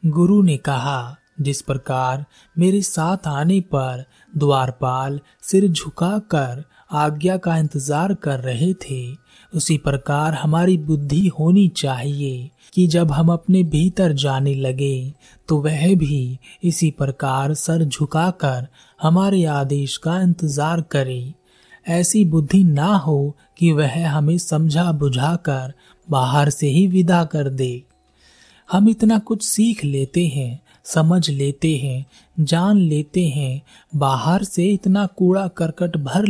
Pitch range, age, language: 140-180 Hz, 30-49, Hindi